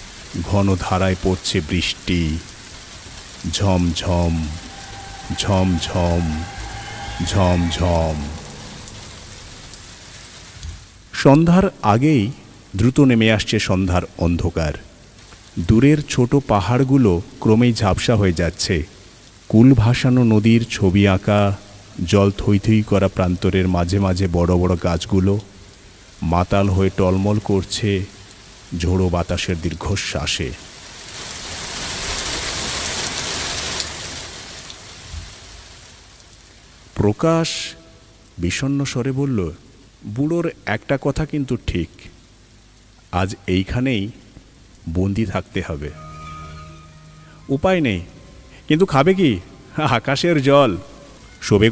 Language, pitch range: Bengali, 90-120 Hz